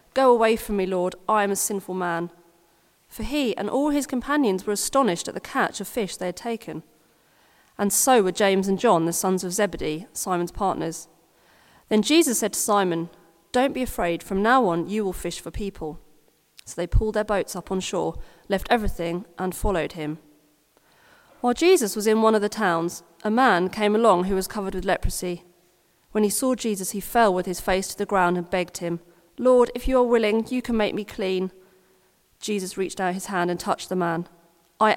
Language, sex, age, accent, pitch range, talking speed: English, female, 30-49, British, 175-215 Hz, 205 wpm